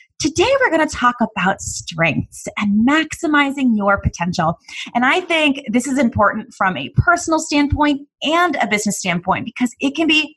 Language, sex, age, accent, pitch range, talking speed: English, female, 20-39, American, 200-270 Hz, 170 wpm